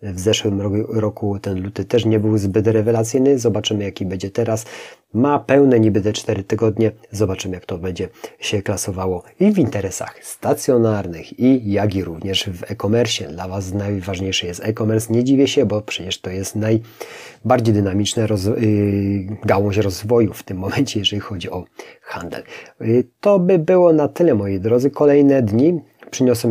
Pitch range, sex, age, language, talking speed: 100-120 Hz, male, 30-49, Polish, 165 wpm